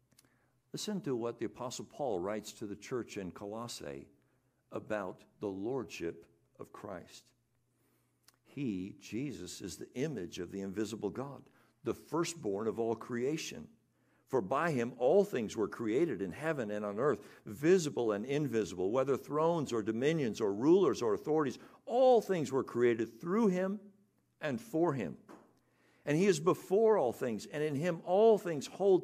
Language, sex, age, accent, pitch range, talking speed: English, male, 60-79, American, 120-170 Hz, 155 wpm